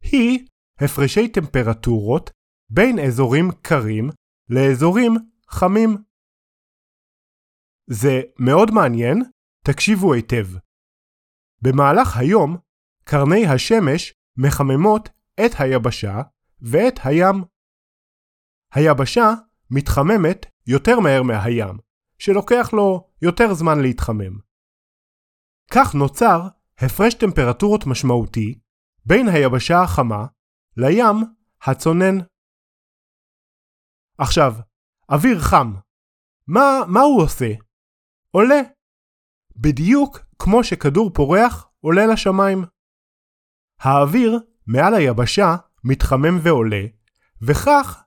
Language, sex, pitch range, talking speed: Hebrew, male, 125-205 Hz, 75 wpm